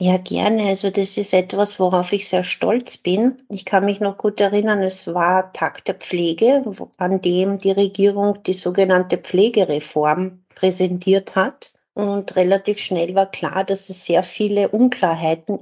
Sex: female